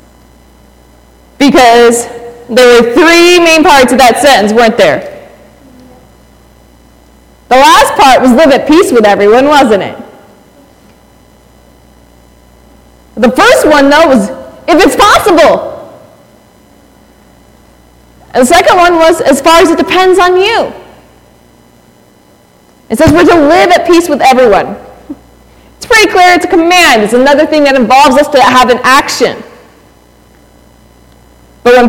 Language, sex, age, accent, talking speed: English, female, 20-39, American, 130 wpm